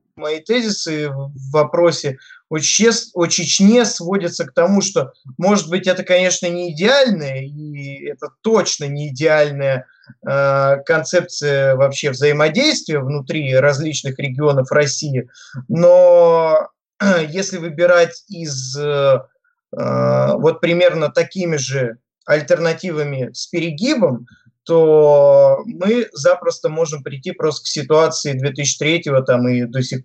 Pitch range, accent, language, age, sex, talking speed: 135-170 Hz, native, Russian, 20-39, male, 110 wpm